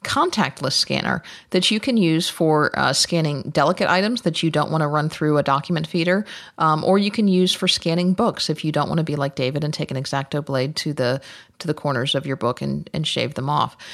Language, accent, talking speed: English, American, 235 wpm